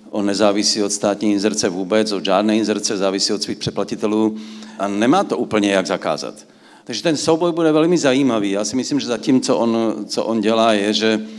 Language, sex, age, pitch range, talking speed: Czech, male, 50-69, 100-115 Hz, 200 wpm